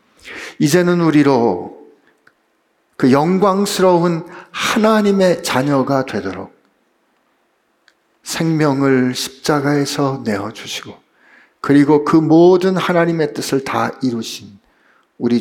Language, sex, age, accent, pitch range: Korean, male, 50-69, native, 115-175 Hz